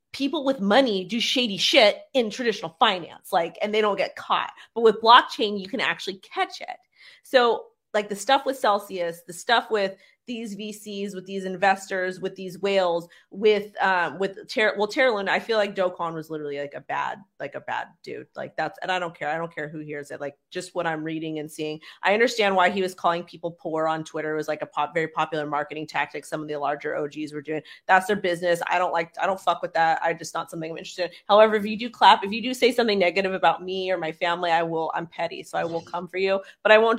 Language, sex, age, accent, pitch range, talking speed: English, female, 30-49, American, 165-215 Hz, 245 wpm